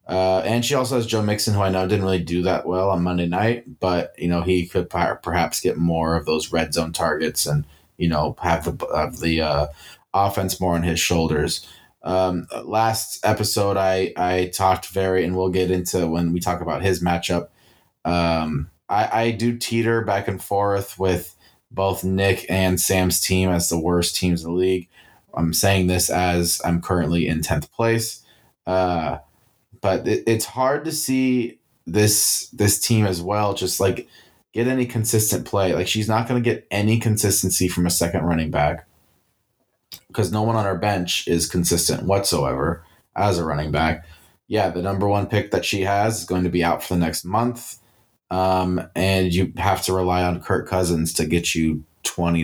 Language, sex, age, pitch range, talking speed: English, male, 20-39, 85-105 Hz, 185 wpm